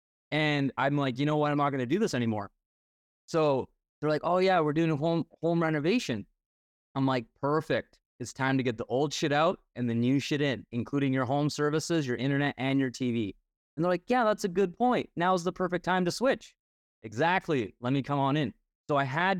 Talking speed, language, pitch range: 225 wpm, English, 135-185 Hz